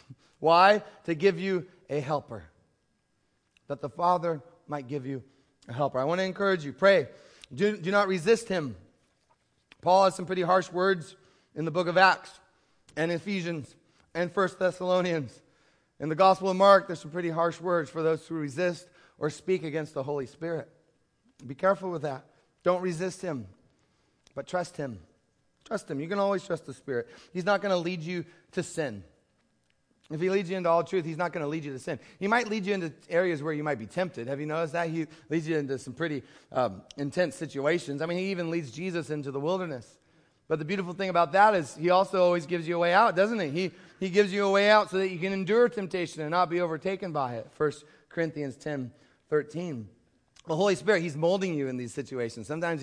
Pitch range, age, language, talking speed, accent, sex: 145-185 Hz, 30-49, English, 210 wpm, American, male